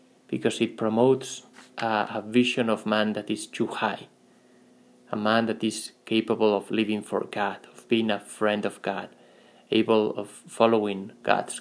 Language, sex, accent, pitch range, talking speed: English, male, Spanish, 110-125 Hz, 160 wpm